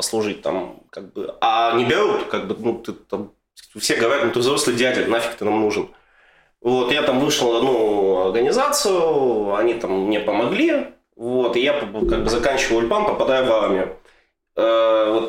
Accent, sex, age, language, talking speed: native, male, 20-39, Russian, 170 wpm